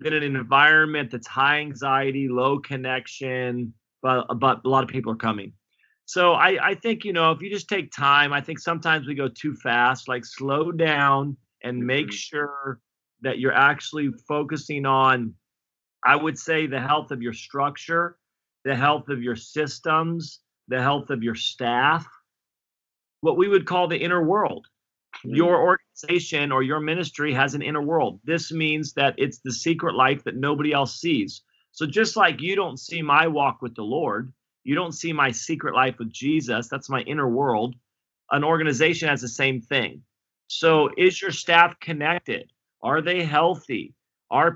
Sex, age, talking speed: male, 40-59, 175 wpm